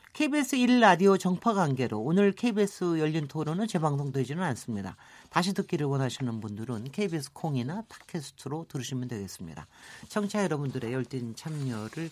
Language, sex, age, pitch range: Korean, male, 40-59, 135-200 Hz